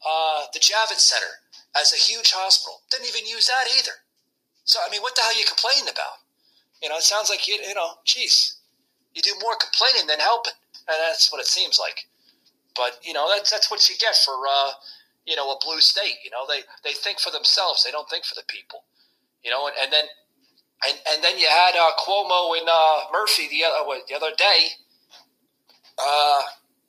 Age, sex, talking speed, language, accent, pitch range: 30-49, male, 210 wpm, English, American, 145-230 Hz